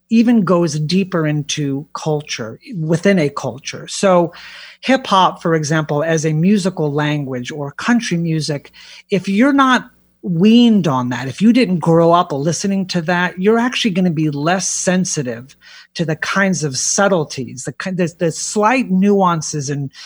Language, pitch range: English, 150-195 Hz